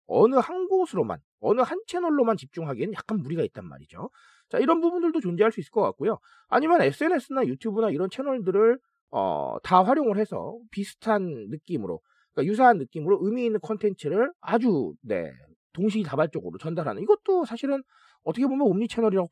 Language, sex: Korean, male